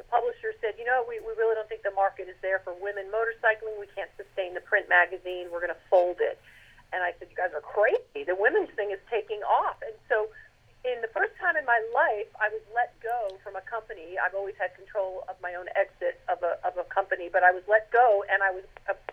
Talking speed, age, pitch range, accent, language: 250 wpm, 40-59, 195-280 Hz, American, English